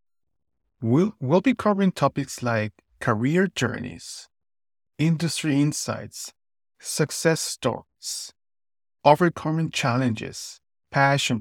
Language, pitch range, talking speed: English, 105-145 Hz, 80 wpm